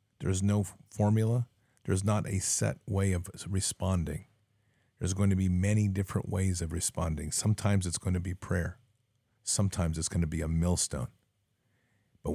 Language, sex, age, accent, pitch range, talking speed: English, male, 50-69, American, 90-110 Hz, 160 wpm